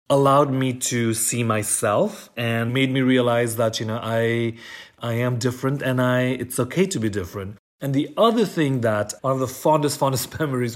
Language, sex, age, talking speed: English, male, 30-49, 185 wpm